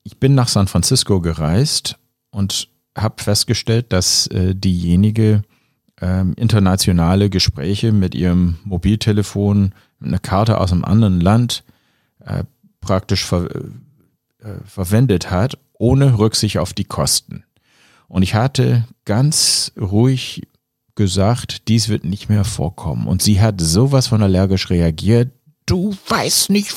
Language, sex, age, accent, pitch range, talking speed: German, male, 50-69, German, 95-125 Hz, 130 wpm